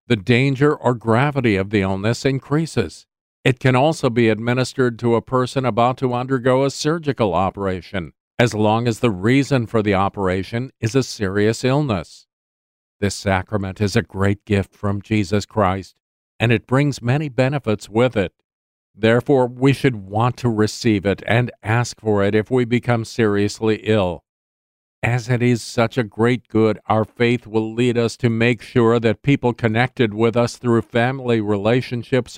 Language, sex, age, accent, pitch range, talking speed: English, male, 50-69, American, 100-125 Hz, 165 wpm